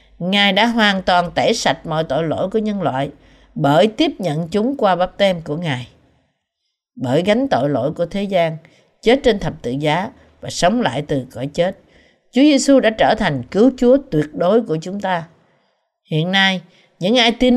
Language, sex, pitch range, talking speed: Vietnamese, female, 155-245 Hz, 190 wpm